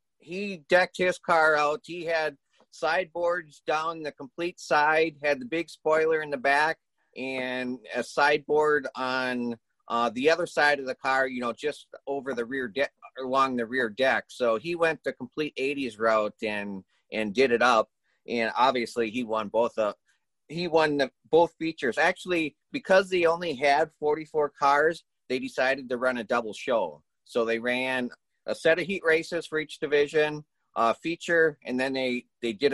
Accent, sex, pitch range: American, male, 125-160 Hz